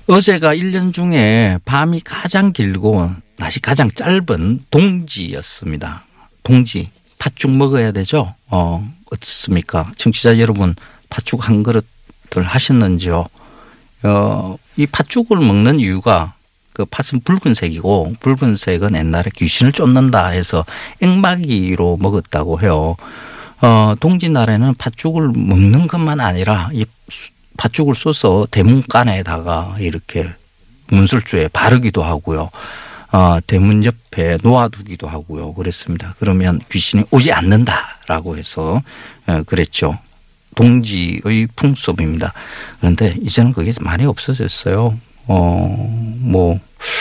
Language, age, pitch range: Korean, 50-69, 90-130 Hz